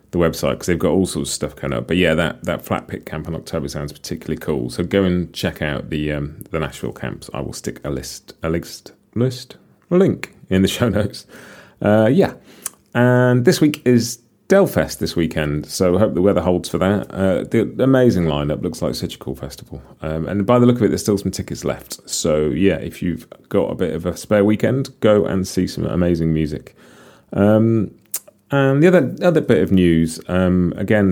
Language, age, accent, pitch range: English, 30-49, British, 80-100 Hz